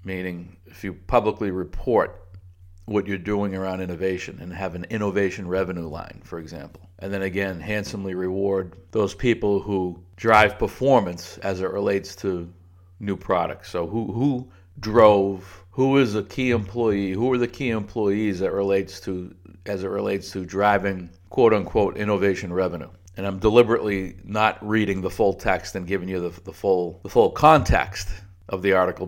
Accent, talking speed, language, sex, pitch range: American, 165 wpm, English, male, 90-105 Hz